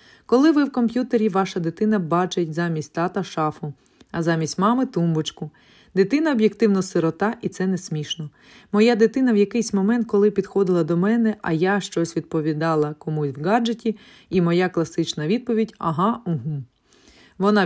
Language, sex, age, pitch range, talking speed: Ukrainian, female, 30-49, 160-215 Hz, 155 wpm